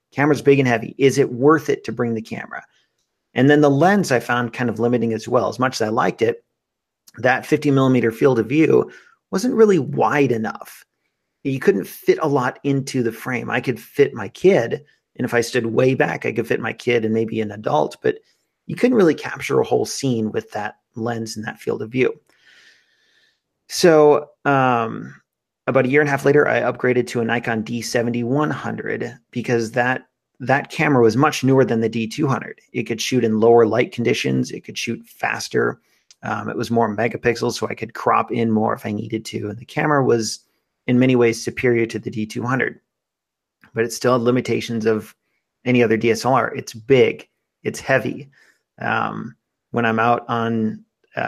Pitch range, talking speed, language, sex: 115-140 Hz, 190 wpm, English, male